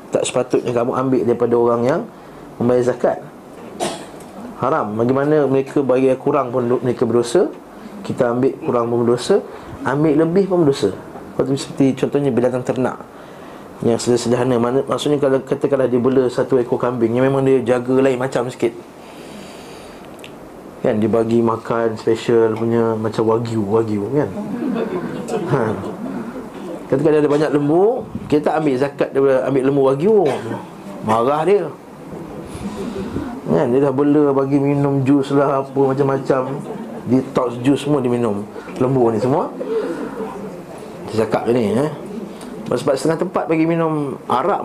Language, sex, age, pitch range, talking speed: Malay, male, 20-39, 120-145 Hz, 130 wpm